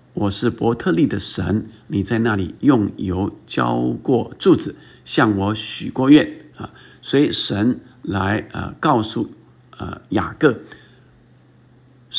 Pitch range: 105-130 Hz